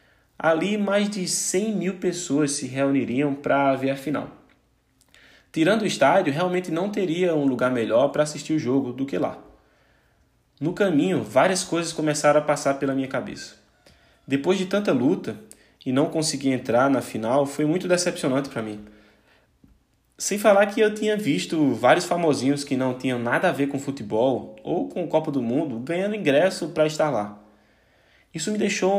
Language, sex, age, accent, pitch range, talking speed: Portuguese, male, 20-39, Brazilian, 135-180 Hz, 175 wpm